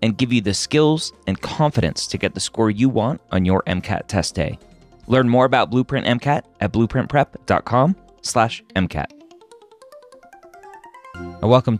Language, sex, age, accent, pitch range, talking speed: English, male, 30-49, American, 95-125 Hz, 140 wpm